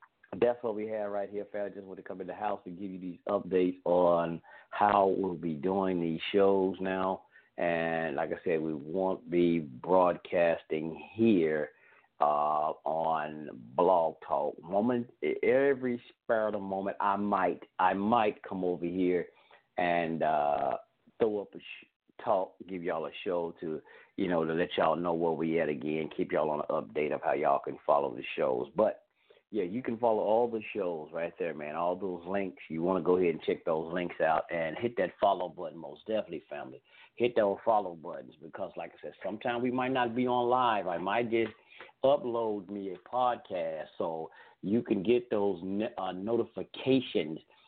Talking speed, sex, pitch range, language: 185 wpm, male, 85-105 Hz, English